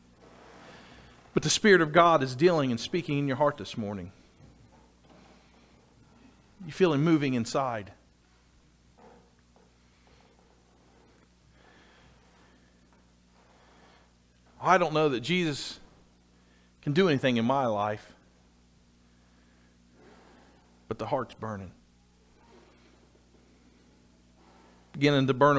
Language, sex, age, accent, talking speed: English, male, 40-59, American, 85 wpm